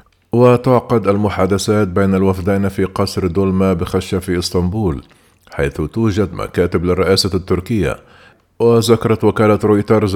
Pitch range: 95-110 Hz